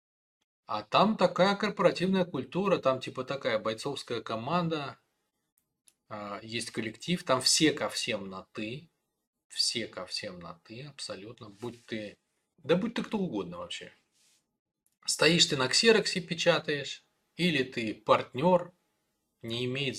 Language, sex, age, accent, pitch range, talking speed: Russian, male, 20-39, native, 115-175 Hz, 125 wpm